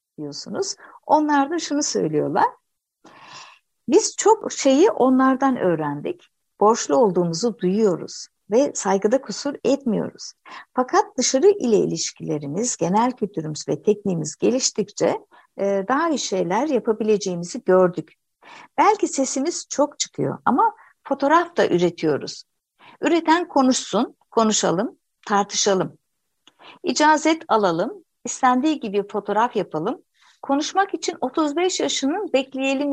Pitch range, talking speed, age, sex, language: 195-300 Hz, 100 wpm, 60-79, female, Turkish